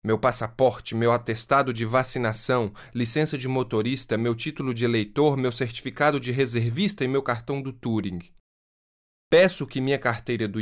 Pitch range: 110-155 Hz